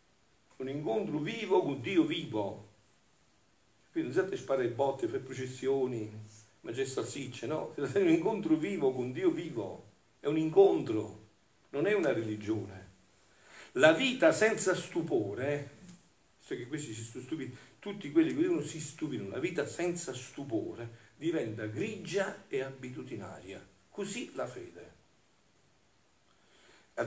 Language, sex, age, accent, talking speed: Italian, male, 50-69, native, 125 wpm